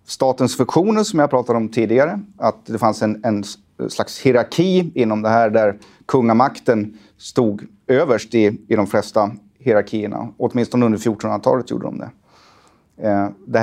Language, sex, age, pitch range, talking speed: Swedish, male, 30-49, 105-120 Hz, 145 wpm